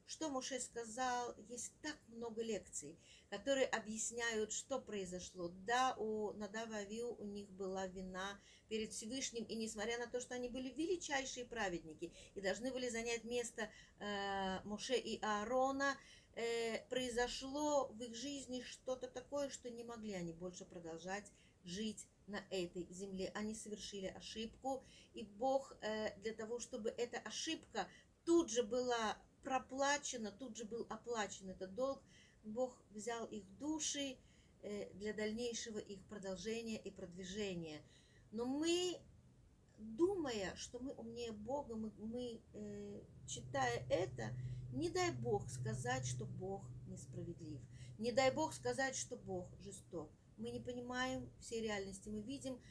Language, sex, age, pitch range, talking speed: Russian, female, 40-59, 195-255 Hz, 130 wpm